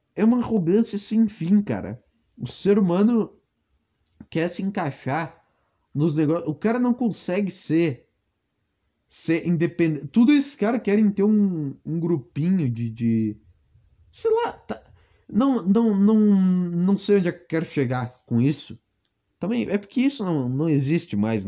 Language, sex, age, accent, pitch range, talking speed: Portuguese, male, 20-39, Brazilian, 145-215 Hz, 145 wpm